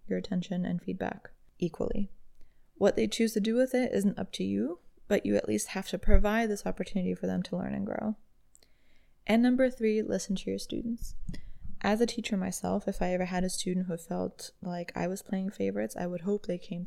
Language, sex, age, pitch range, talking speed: English, female, 20-39, 185-215 Hz, 215 wpm